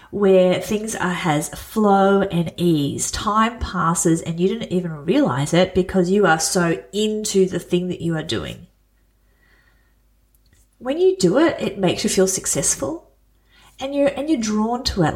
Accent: Australian